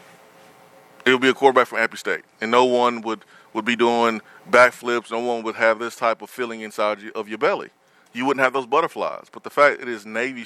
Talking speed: 235 wpm